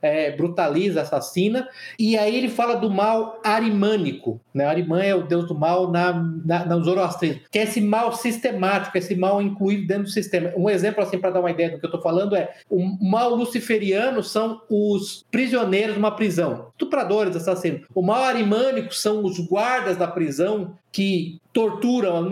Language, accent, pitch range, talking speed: Portuguese, Brazilian, 180-225 Hz, 180 wpm